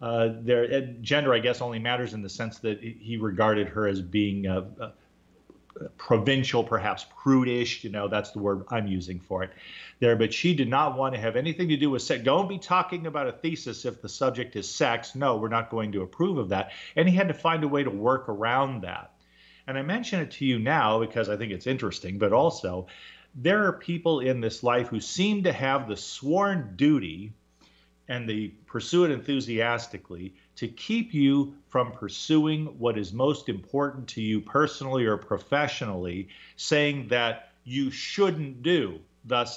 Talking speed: 190 wpm